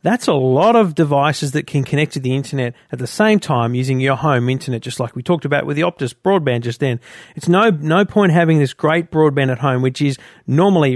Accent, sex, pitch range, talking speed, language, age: Australian, male, 130-170 Hz, 235 wpm, English, 40-59